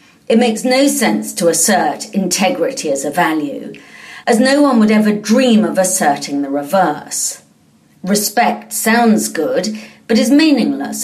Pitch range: 155-255 Hz